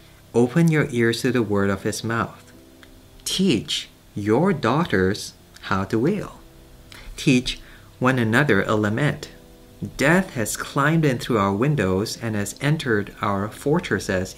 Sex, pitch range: male, 95-120 Hz